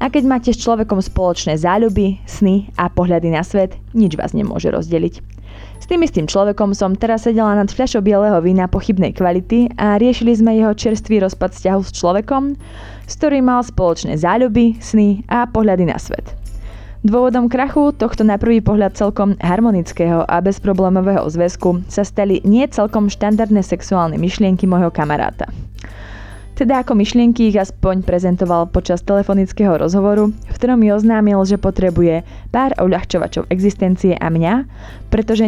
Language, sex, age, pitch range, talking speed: Slovak, female, 20-39, 170-220 Hz, 150 wpm